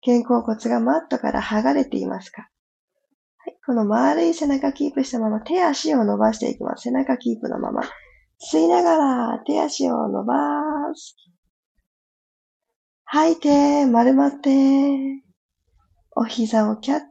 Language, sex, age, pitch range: Japanese, female, 20-39, 220-295 Hz